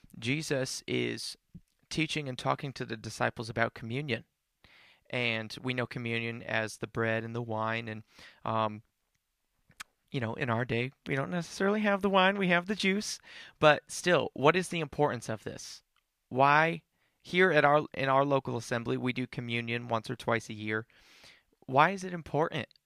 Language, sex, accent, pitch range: English, male, American, 115-140 Hz